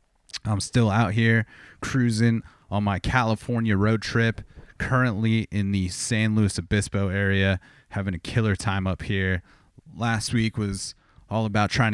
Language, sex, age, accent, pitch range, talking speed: English, male, 30-49, American, 95-110 Hz, 145 wpm